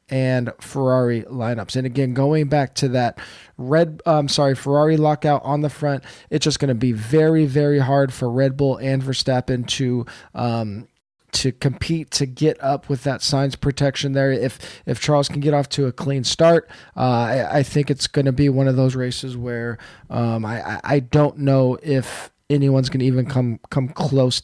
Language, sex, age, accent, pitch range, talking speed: English, male, 20-39, American, 125-145 Hz, 190 wpm